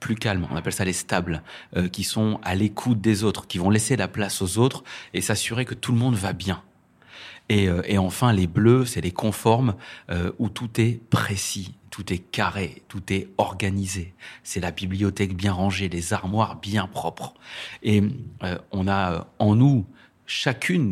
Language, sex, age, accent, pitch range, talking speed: French, male, 30-49, French, 95-125 Hz, 185 wpm